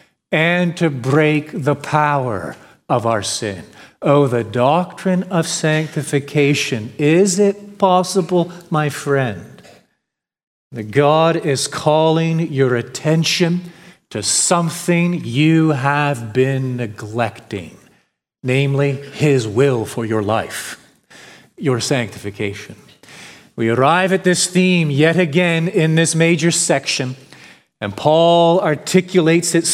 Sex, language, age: male, English, 40-59